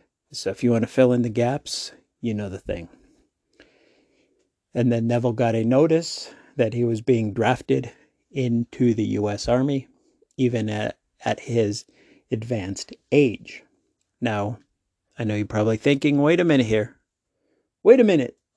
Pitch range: 110-135 Hz